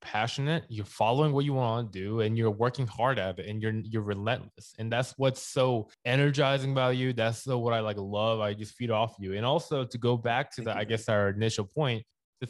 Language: English